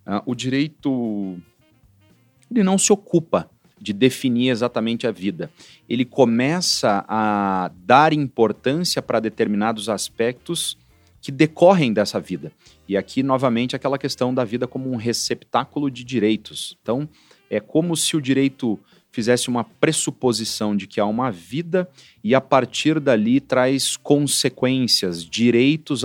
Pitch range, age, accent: 100-135 Hz, 40-59, Brazilian